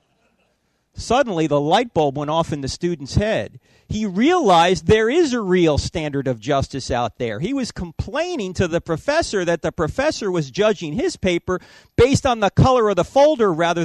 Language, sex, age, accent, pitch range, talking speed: Danish, male, 40-59, American, 130-185 Hz, 180 wpm